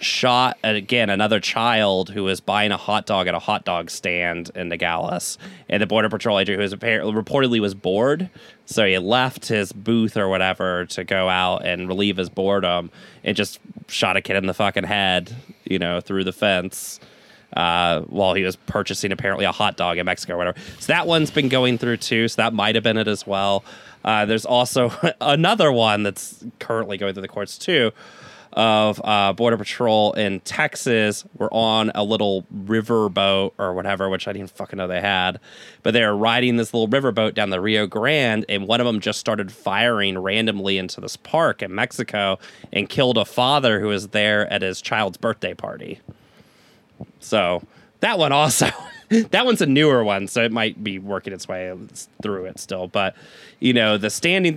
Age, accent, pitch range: 20-39, American, 95-120 Hz